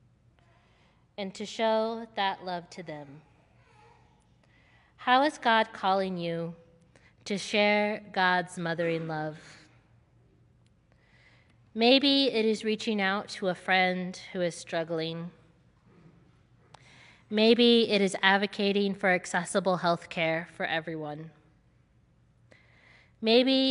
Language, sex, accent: English, female, American